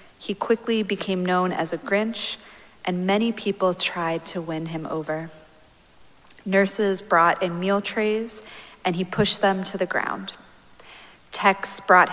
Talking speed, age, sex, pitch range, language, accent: 145 wpm, 40-59, female, 175-200 Hz, English, American